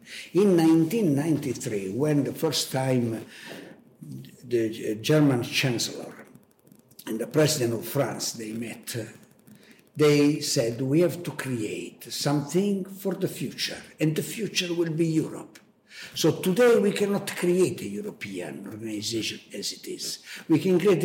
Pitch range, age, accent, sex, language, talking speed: 125-180 Hz, 60-79, Italian, male, German, 130 wpm